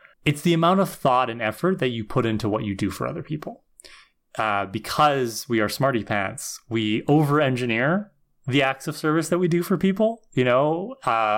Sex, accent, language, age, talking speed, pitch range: male, American, English, 20-39, 195 wpm, 110-155 Hz